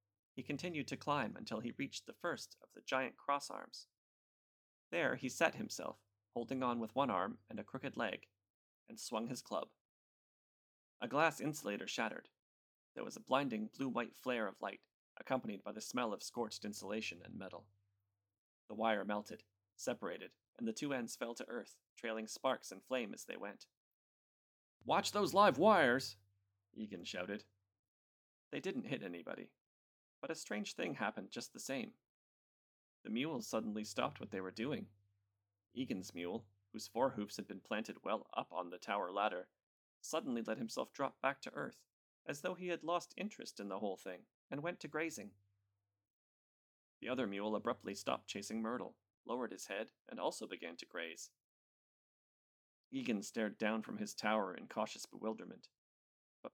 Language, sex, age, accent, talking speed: English, male, 30-49, American, 165 wpm